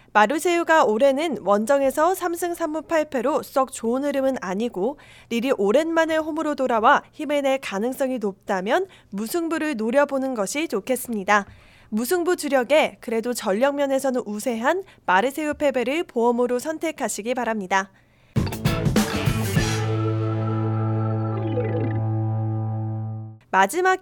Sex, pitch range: female, 215-315 Hz